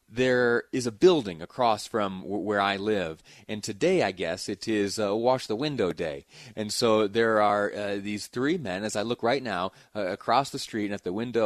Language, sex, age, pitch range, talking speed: English, male, 30-49, 110-140 Hz, 220 wpm